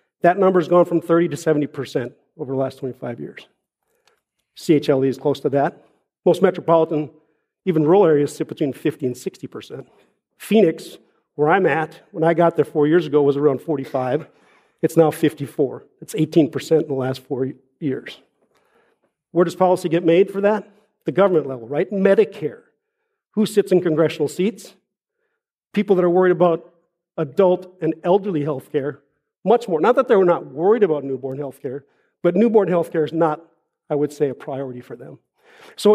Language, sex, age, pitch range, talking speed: English, male, 50-69, 150-190 Hz, 170 wpm